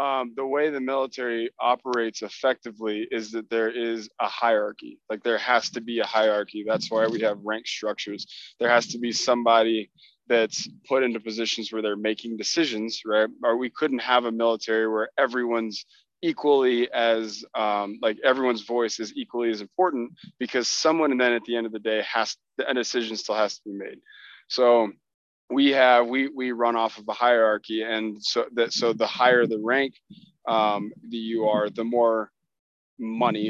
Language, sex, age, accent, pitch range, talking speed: English, male, 20-39, American, 110-125 Hz, 185 wpm